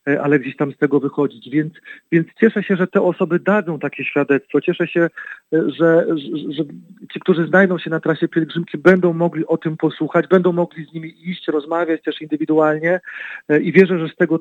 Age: 40-59